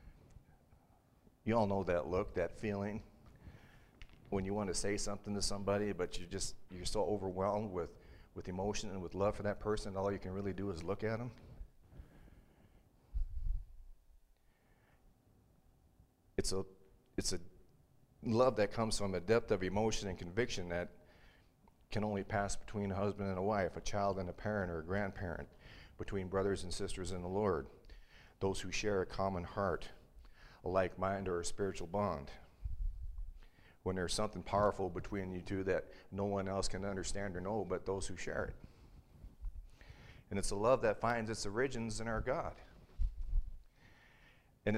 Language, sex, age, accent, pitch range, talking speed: English, male, 40-59, American, 90-105 Hz, 165 wpm